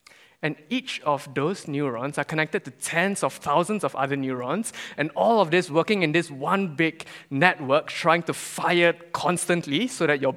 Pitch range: 135-180 Hz